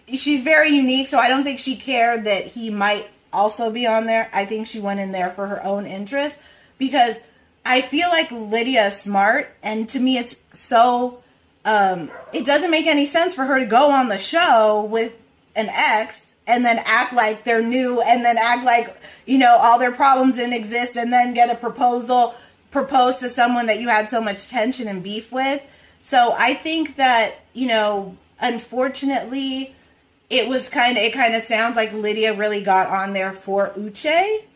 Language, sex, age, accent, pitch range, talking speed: English, female, 30-49, American, 205-255 Hz, 195 wpm